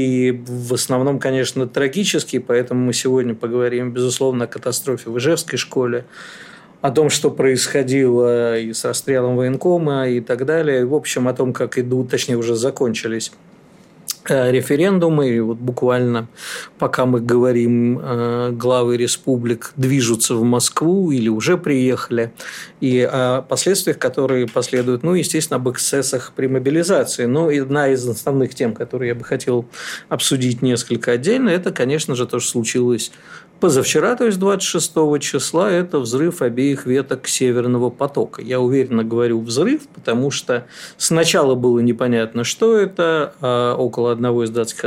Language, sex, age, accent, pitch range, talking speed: Russian, male, 50-69, native, 120-145 Hz, 140 wpm